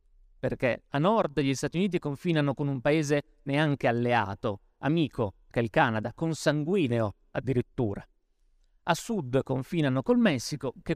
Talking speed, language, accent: 135 wpm, Italian, native